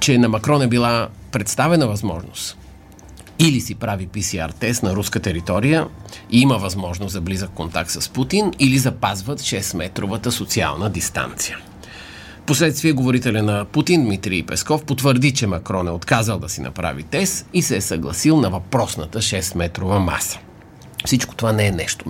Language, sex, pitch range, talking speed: Bulgarian, male, 95-130 Hz, 150 wpm